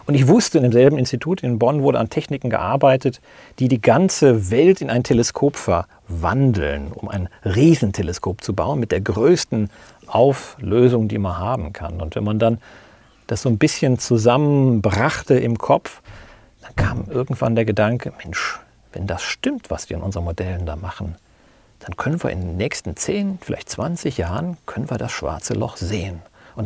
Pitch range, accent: 100-135 Hz, German